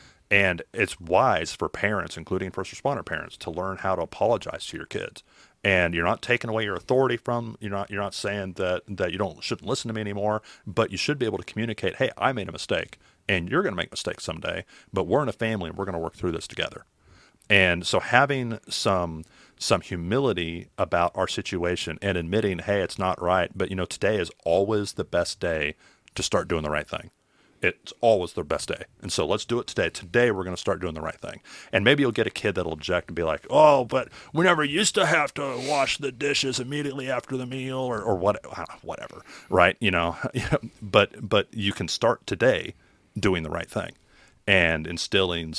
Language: English